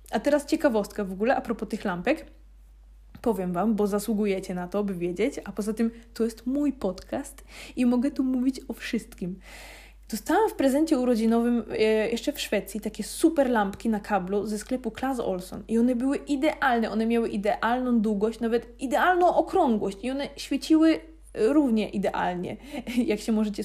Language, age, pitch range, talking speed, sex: Polish, 20-39, 205-260 Hz, 165 wpm, female